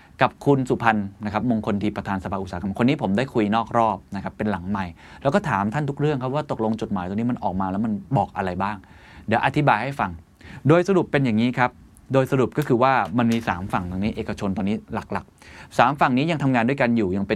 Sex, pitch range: male, 100-125 Hz